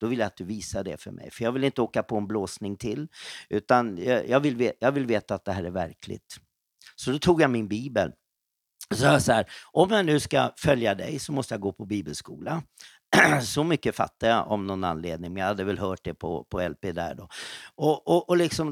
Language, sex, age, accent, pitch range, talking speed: English, male, 50-69, Swedish, 105-145 Hz, 245 wpm